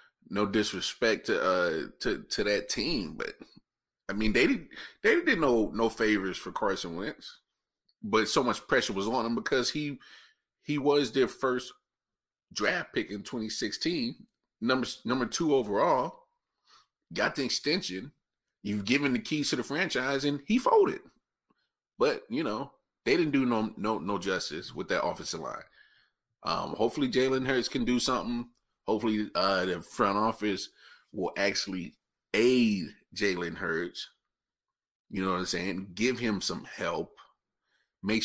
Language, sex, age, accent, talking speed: English, male, 30-49, American, 150 wpm